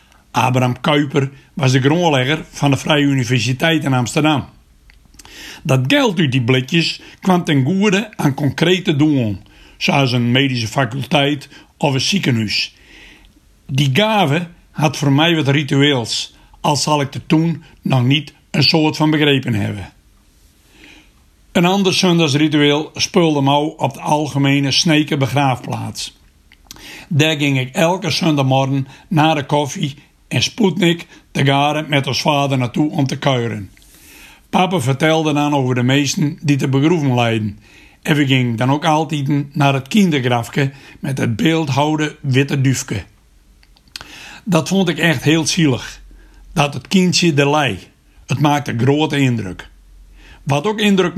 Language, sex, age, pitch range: Dutch, male, 60-79, 130-160 Hz